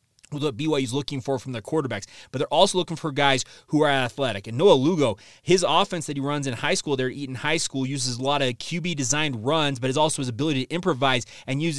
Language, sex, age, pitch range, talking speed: English, male, 30-49, 130-155 Hz, 240 wpm